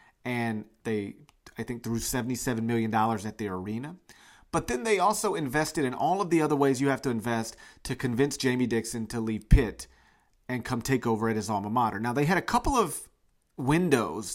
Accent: American